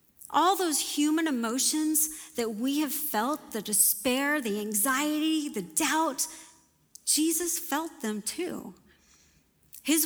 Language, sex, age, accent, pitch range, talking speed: English, female, 40-59, American, 240-320 Hz, 115 wpm